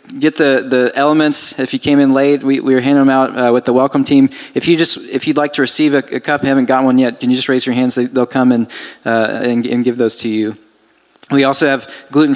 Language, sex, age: English, male, 20-39